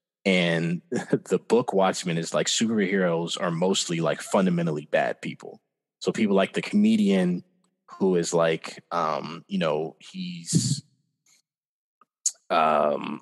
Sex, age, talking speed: male, 20-39, 120 wpm